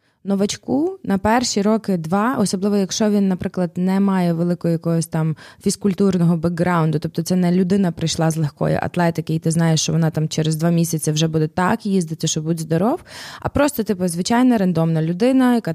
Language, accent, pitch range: Ukrainian, native, 160-205 Hz